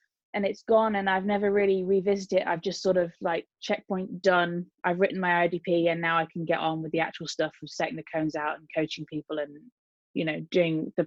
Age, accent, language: 20-39, British, English